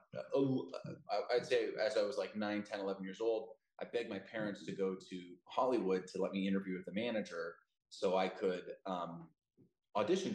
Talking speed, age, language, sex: 185 wpm, 20-39, English, male